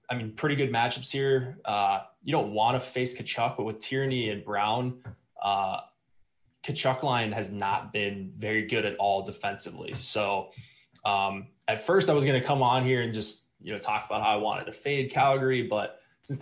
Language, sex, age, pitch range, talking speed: English, male, 20-39, 105-125 Hz, 195 wpm